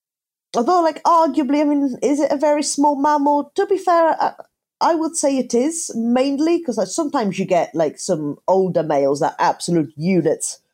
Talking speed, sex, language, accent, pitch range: 180 wpm, female, English, British, 160-270 Hz